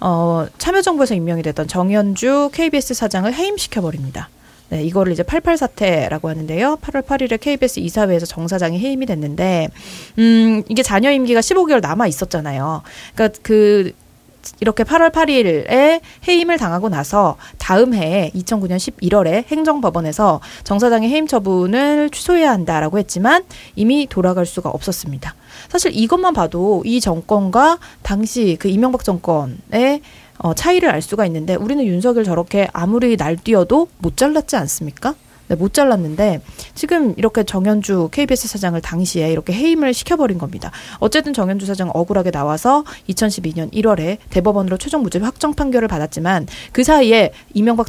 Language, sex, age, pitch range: Korean, female, 30-49, 170-255 Hz